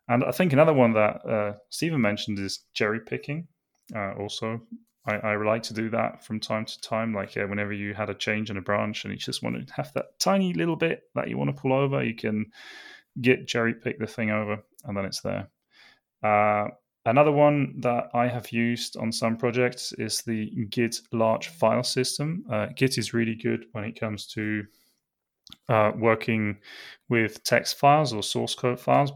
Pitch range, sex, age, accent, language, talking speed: 110-125 Hz, male, 20-39, British, English, 190 wpm